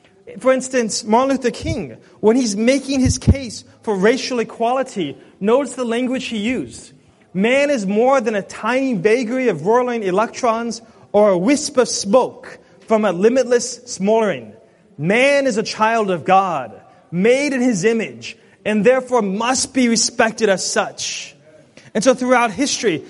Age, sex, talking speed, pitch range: 30-49, male, 150 wpm, 195-245 Hz